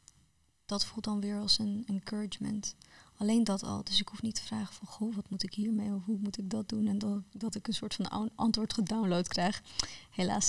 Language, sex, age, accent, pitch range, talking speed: Dutch, female, 20-39, Dutch, 195-215 Hz, 230 wpm